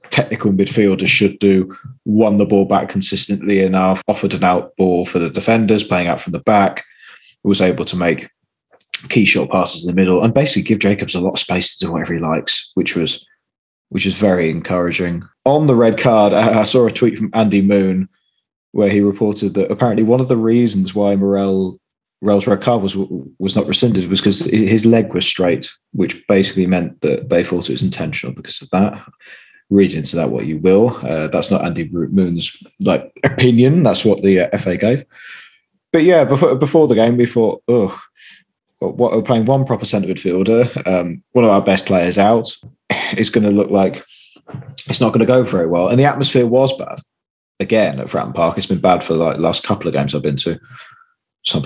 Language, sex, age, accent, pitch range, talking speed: English, male, 20-39, British, 95-115 Hz, 200 wpm